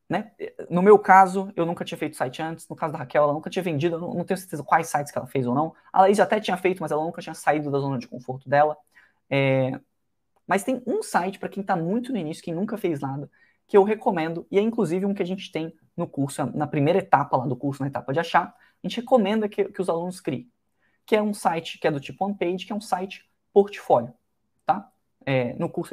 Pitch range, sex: 155-205 Hz, male